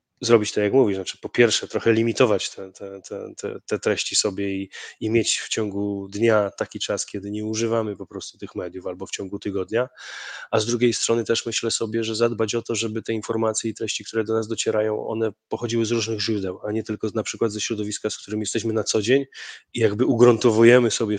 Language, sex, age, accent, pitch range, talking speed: Polish, male, 20-39, native, 105-115 Hz, 215 wpm